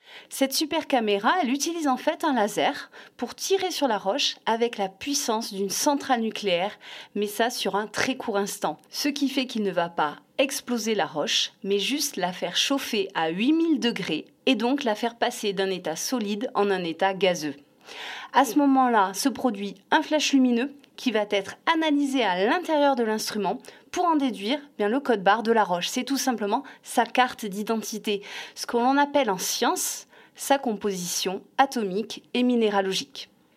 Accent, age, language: French, 30-49, French